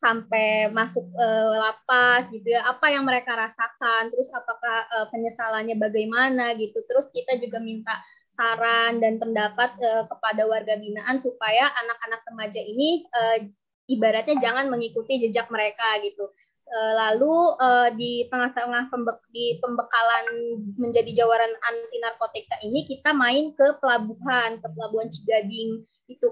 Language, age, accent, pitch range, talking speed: Indonesian, 20-39, native, 225-255 Hz, 130 wpm